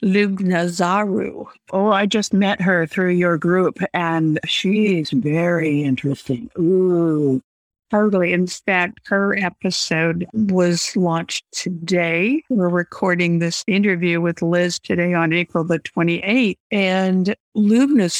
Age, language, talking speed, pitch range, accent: 60-79, English, 120 wpm, 175-210 Hz, American